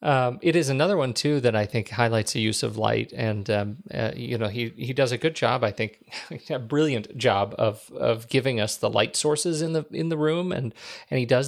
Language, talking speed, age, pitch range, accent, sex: English, 240 wpm, 40-59, 115-135 Hz, American, male